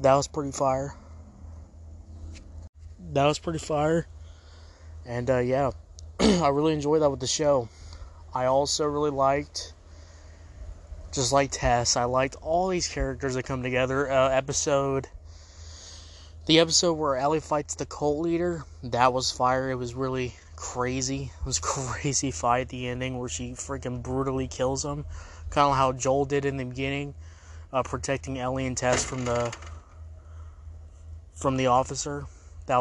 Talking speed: 150 wpm